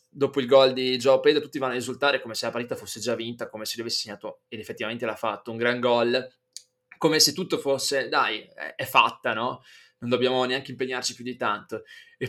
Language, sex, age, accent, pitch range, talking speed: Italian, male, 20-39, native, 125-155 Hz, 215 wpm